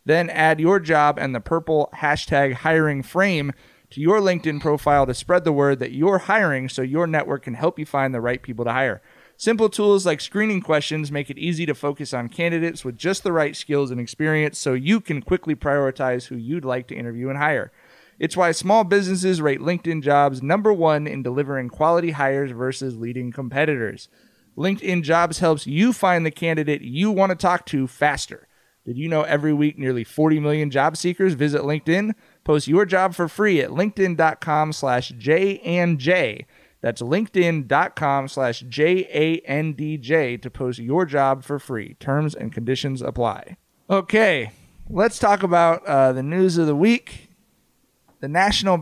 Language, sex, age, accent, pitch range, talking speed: English, male, 30-49, American, 135-180 Hz, 180 wpm